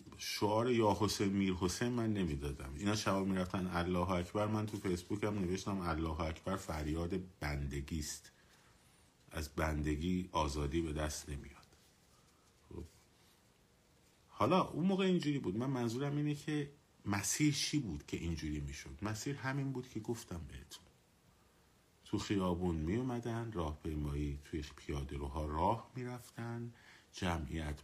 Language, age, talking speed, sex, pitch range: Persian, 50-69, 135 wpm, male, 80-105 Hz